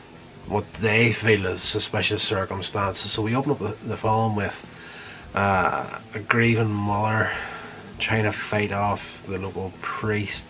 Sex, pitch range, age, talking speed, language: male, 95-115 Hz, 20-39, 130 wpm, English